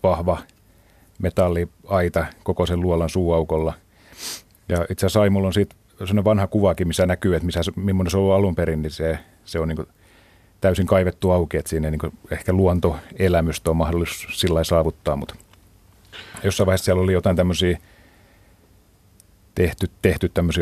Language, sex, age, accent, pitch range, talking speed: Finnish, male, 30-49, native, 85-95 Hz, 150 wpm